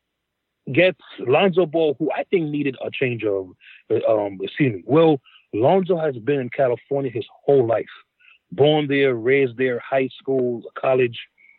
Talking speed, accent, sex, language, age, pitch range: 145 wpm, American, male, English, 30-49, 125-160 Hz